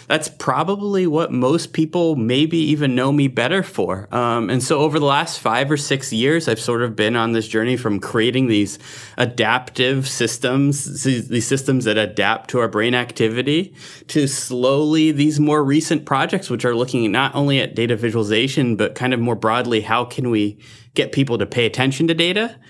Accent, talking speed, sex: American, 185 wpm, male